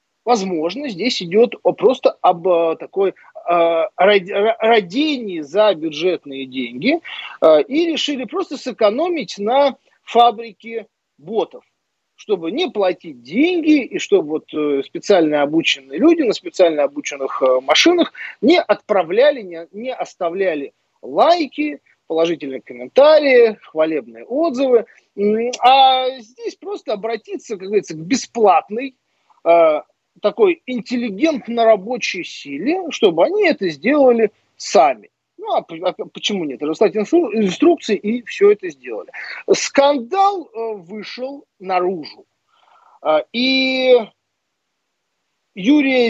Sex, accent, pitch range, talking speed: male, native, 185-305 Hz, 100 wpm